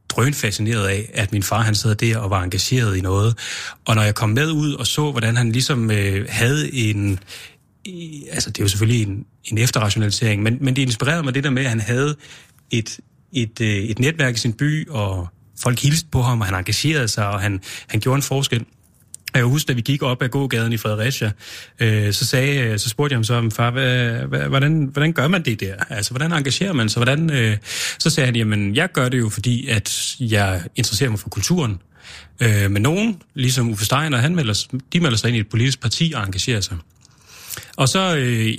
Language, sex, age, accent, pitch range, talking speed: Danish, male, 30-49, native, 105-135 Hz, 225 wpm